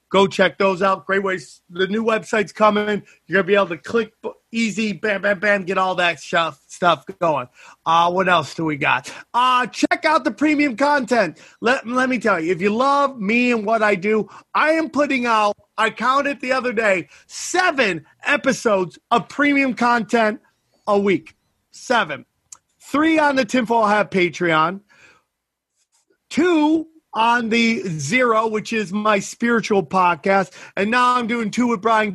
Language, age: English, 30-49